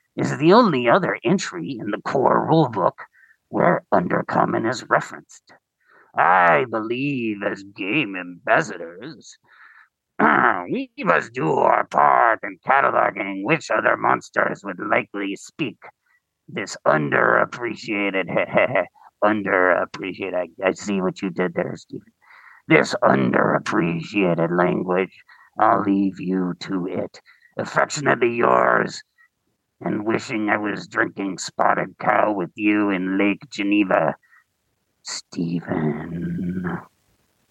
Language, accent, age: English, American, 50-69